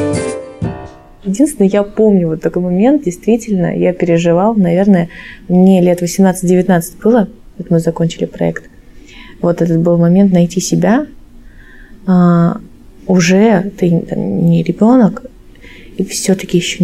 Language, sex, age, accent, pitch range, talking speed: Russian, female, 20-39, native, 175-200 Hz, 115 wpm